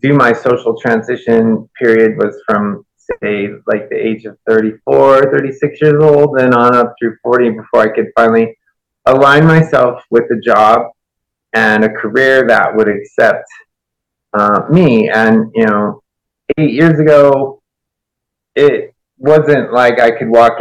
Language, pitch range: English, 110-150 Hz